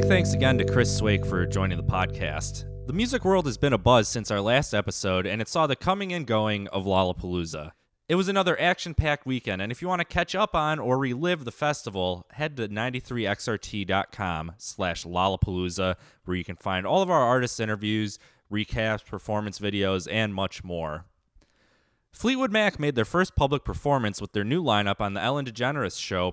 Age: 20-39